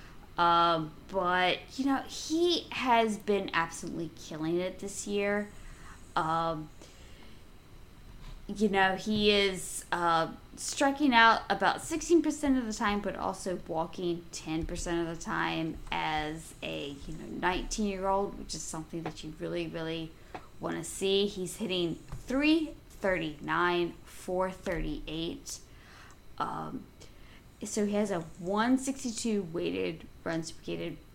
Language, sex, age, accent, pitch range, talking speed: English, female, 20-39, American, 170-215 Hz, 120 wpm